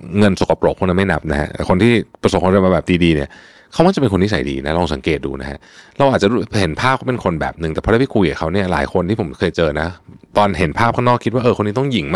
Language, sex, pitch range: Thai, male, 85-120 Hz